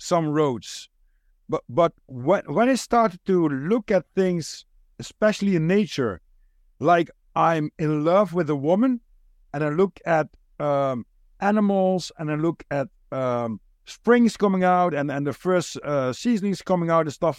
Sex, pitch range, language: male, 150-200 Hz, English